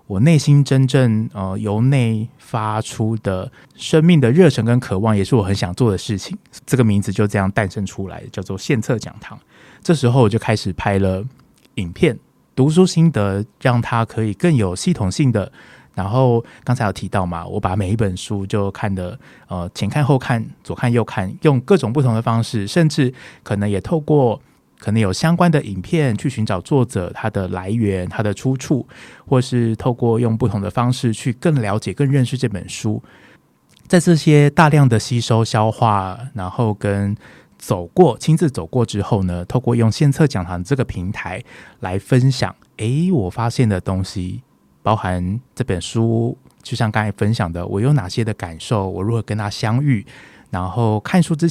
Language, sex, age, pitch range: Chinese, male, 20-39, 100-130 Hz